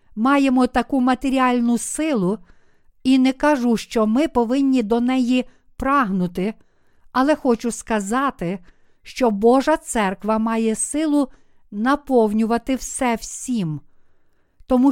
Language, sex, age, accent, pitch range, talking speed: Ukrainian, female, 50-69, native, 210-265 Hz, 100 wpm